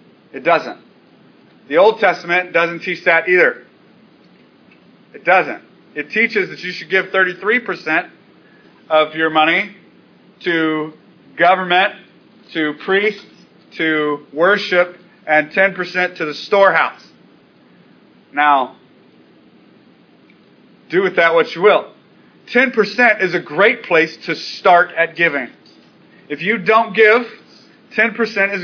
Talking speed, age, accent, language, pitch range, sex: 115 wpm, 30-49, American, English, 180-230 Hz, male